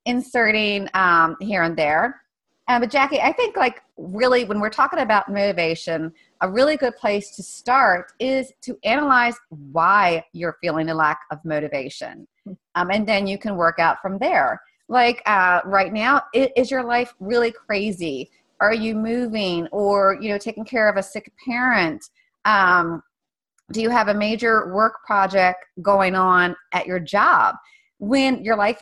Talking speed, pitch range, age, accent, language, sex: 165 wpm, 170-240 Hz, 30-49, American, English, female